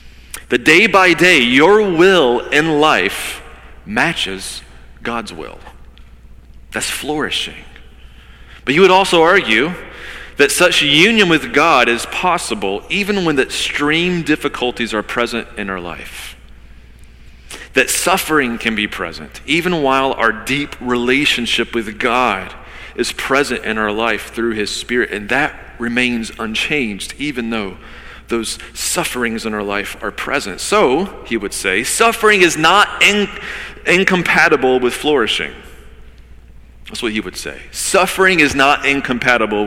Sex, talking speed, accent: male, 130 wpm, American